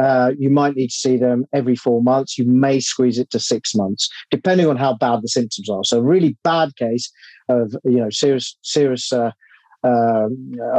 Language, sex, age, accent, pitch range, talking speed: English, male, 40-59, British, 125-145 Hz, 200 wpm